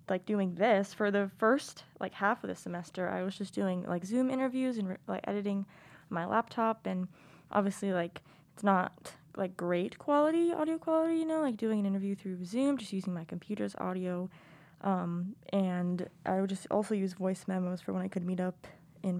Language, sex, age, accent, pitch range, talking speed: English, female, 20-39, American, 180-225 Hz, 195 wpm